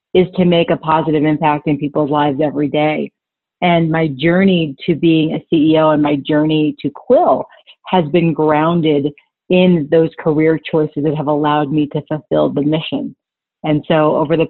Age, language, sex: 30-49, English, female